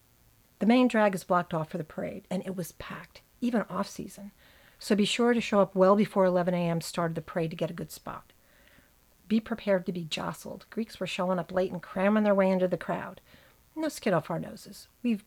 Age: 50-69